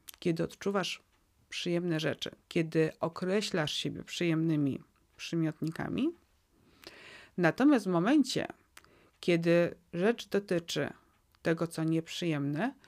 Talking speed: 85 wpm